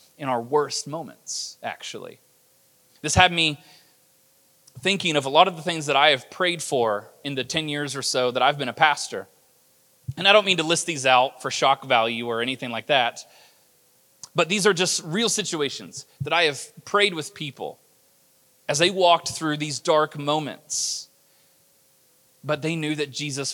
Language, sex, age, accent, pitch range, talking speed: English, male, 30-49, American, 125-155 Hz, 180 wpm